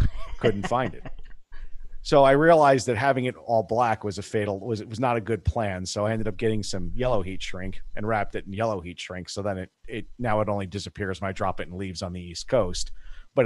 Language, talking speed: English, 245 wpm